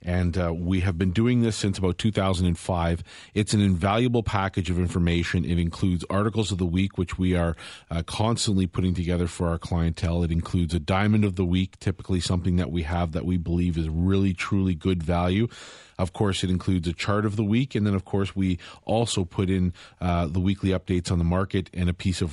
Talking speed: 215 wpm